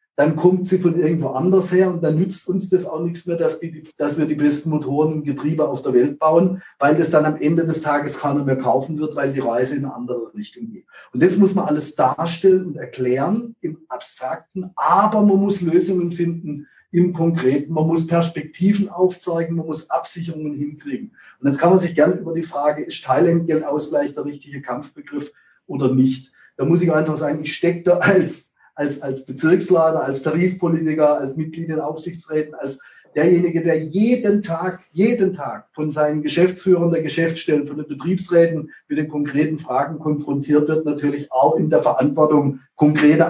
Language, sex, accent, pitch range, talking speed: German, male, German, 145-170 Hz, 185 wpm